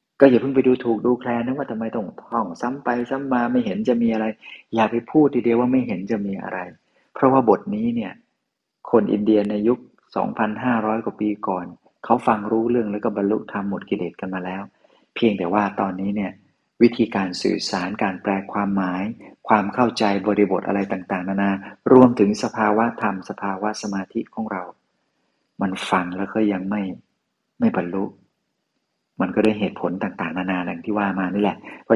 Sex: male